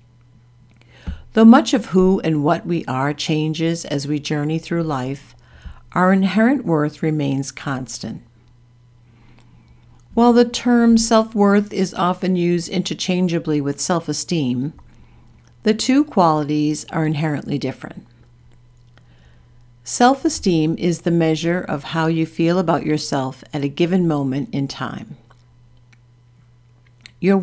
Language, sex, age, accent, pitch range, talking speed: English, female, 50-69, American, 130-185 Hz, 115 wpm